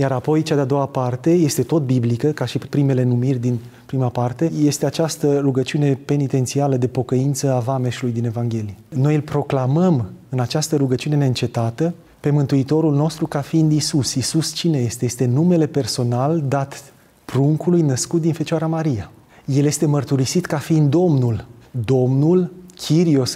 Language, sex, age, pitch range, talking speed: Romanian, male, 30-49, 125-155 Hz, 150 wpm